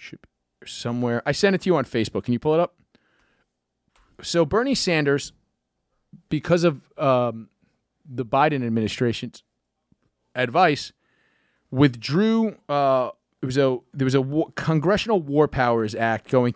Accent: American